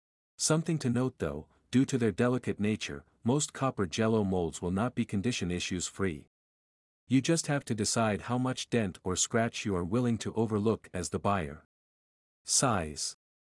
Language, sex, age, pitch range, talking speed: English, male, 50-69, 90-120 Hz, 170 wpm